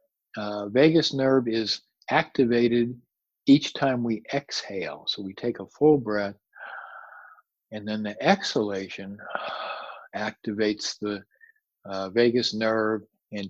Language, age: English, 50-69